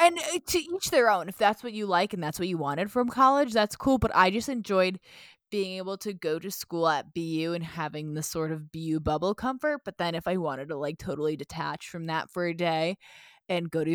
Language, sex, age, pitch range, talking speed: English, female, 20-39, 165-205 Hz, 240 wpm